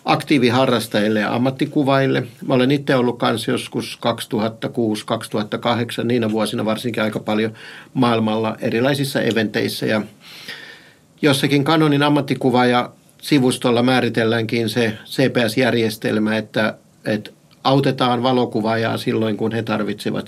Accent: native